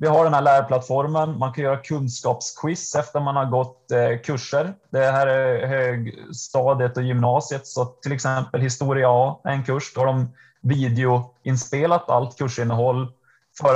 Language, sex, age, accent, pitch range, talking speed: Swedish, male, 20-39, native, 120-135 Hz, 150 wpm